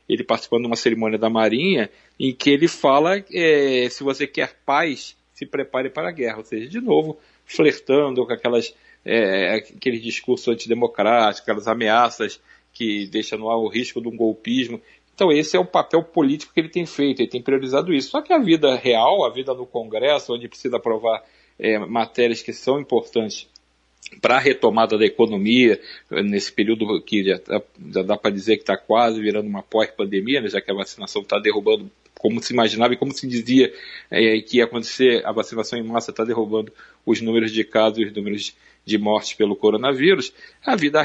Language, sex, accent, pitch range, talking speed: Portuguese, male, Brazilian, 110-145 Hz, 190 wpm